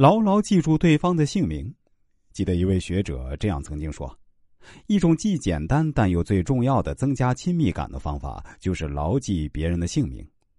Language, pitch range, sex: Chinese, 80-130 Hz, male